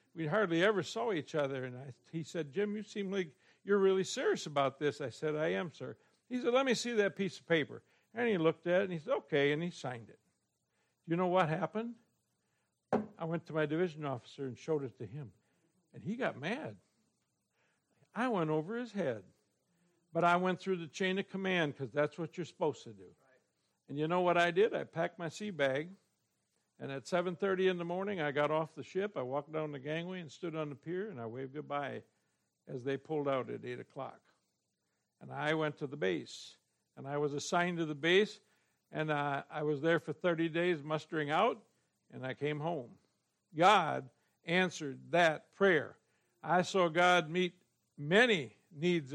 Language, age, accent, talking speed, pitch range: English, 60-79, American, 205 wpm, 145-190 Hz